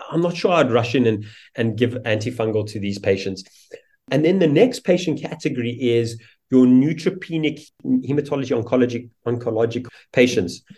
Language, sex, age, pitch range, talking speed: English, male, 30-49, 115-140 Hz, 145 wpm